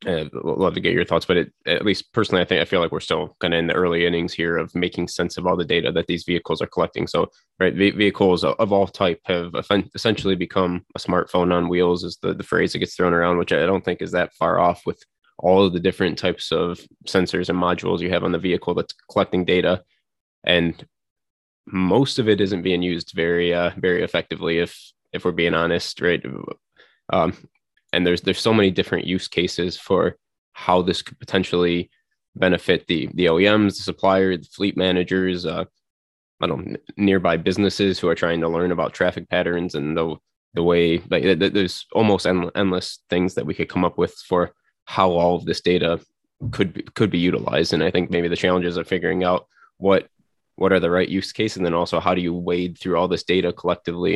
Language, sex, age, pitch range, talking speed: English, male, 20-39, 85-95 Hz, 215 wpm